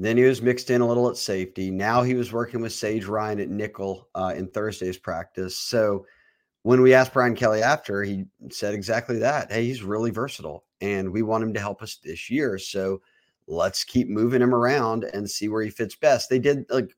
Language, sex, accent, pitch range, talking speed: English, male, American, 100-125 Hz, 215 wpm